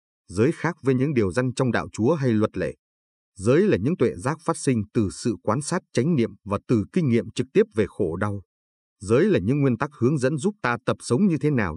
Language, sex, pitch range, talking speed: Vietnamese, male, 100-130 Hz, 245 wpm